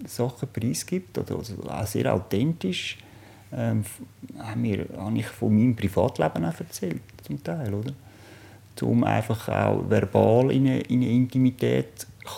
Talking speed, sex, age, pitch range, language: 145 wpm, male, 50-69, 105-120 Hz, German